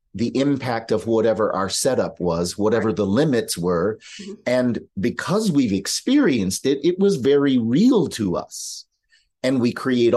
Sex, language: male, English